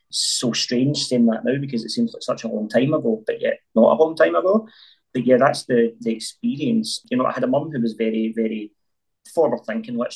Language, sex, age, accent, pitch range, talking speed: English, male, 20-39, British, 115-150 Hz, 235 wpm